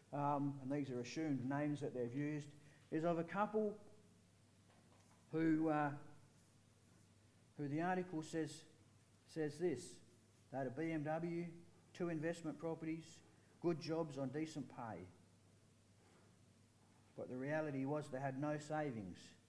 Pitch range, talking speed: 110-145 Hz, 125 wpm